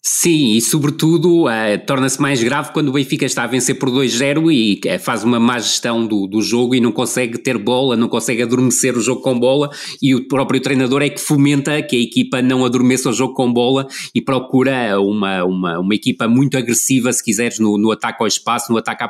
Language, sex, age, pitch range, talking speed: Portuguese, male, 20-39, 120-140 Hz, 210 wpm